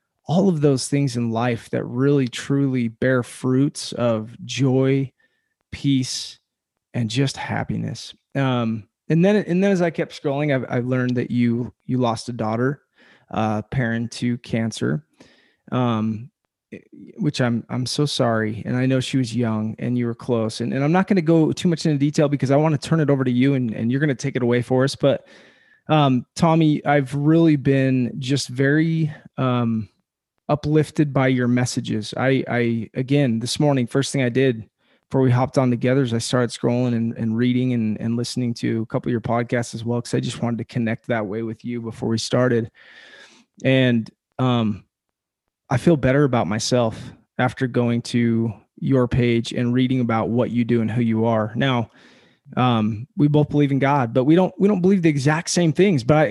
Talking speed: 195 wpm